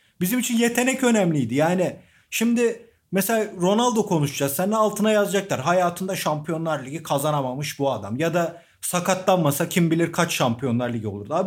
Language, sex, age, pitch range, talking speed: Turkish, male, 40-59, 150-205 Hz, 145 wpm